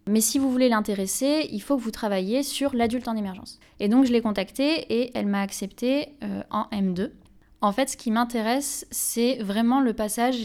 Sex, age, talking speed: female, 20-39, 200 wpm